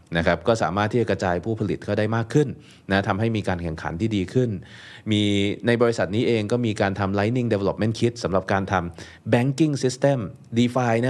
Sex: male